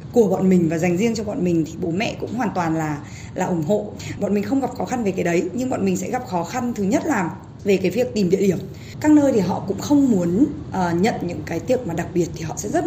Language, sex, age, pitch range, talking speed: Vietnamese, female, 20-39, 170-230 Hz, 295 wpm